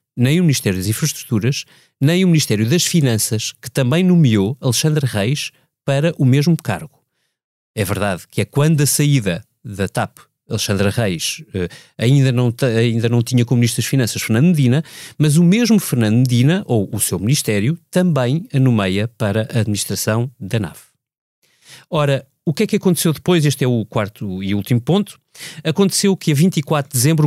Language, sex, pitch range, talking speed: Portuguese, male, 120-170 Hz, 170 wpm